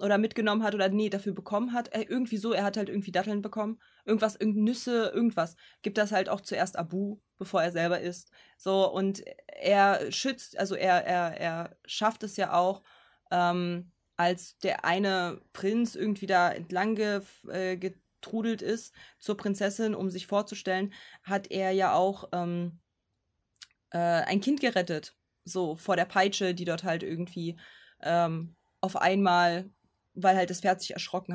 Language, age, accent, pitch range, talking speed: German, 20-39, German, 175-210 Hz, 160 wpm